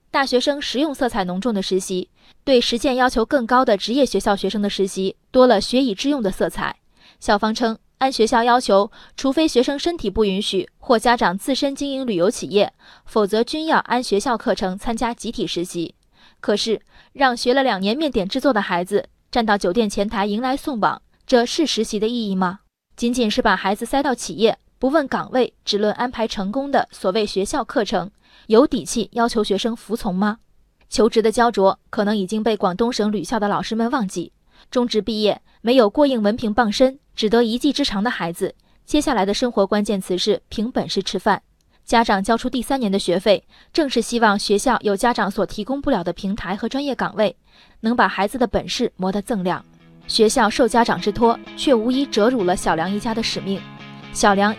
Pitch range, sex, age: 200-250 Hz, female, 20-39